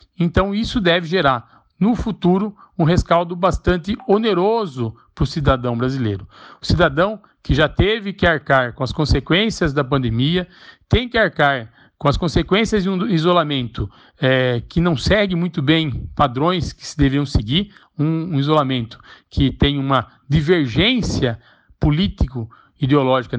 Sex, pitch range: male, 135-190 Hz